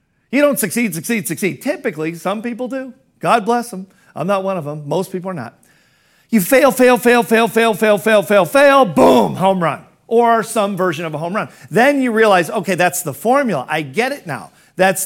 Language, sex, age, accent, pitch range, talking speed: English, male, 50-69, American, 175-225 Hz, 210 wpm